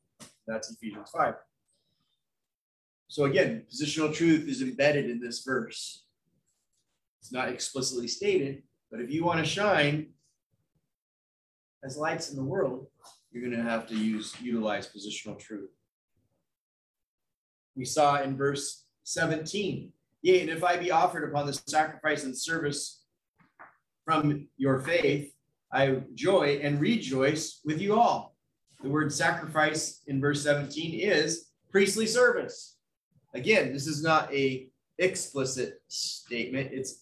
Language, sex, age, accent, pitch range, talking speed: English, male, 30-49, American, 135-165 Hz, 130 wpm